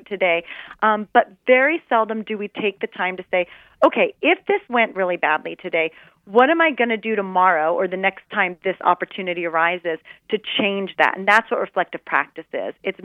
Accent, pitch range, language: American, 185-235 Hz, English